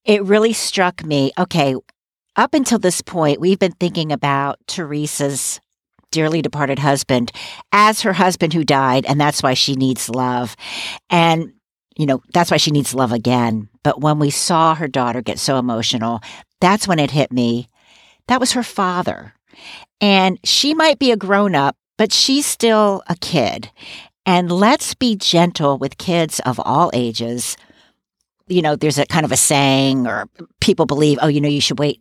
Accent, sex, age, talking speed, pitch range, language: American, female, 50-69, 170 wpm, 135-195 Hz, English